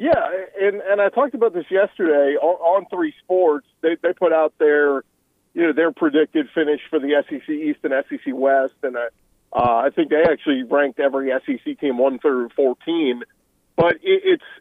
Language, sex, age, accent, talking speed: English, male, 40-59, American, 180 wpm